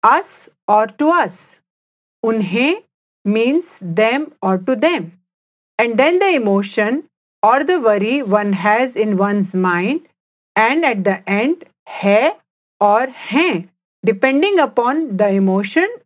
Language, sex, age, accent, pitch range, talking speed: English, female, 50-69, Indian, 210-310 Hz, 125 wpm